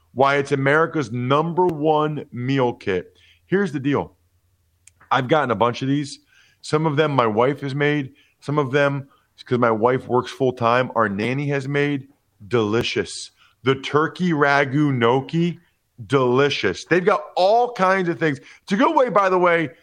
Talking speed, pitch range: 170 wpm, 115-180 Hz